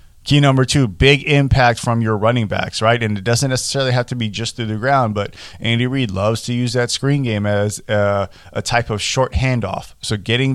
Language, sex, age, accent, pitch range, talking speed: English, male, 20-39, American, 110-130 Hz, 220 wpm